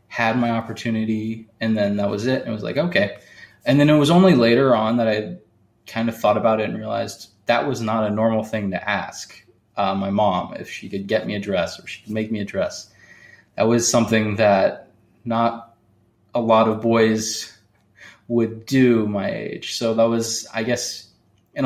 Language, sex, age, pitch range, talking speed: English, male, 20-39, 110-130 Hz, 200 wpm